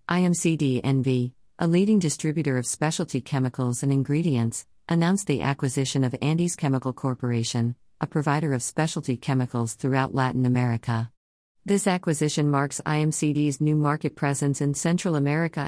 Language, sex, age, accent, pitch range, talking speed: English, female, 50-69, American, 130-155 Hz, 130 wpm